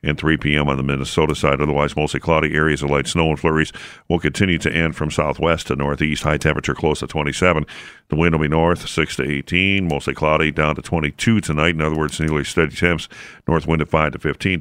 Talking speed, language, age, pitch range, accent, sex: 225 wpm, English, 50-69, 75-100 Hz, American, male